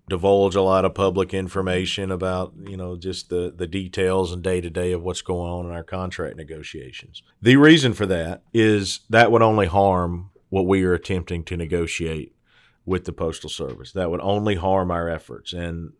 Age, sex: 40-59, male